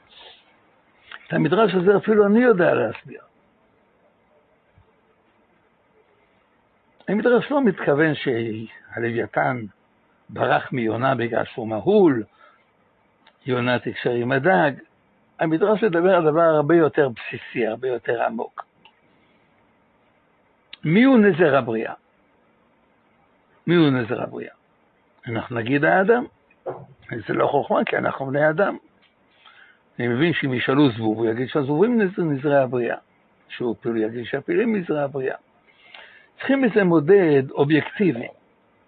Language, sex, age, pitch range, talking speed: Hebrew, male, 60-79, 125-190 Hz, 105 wpm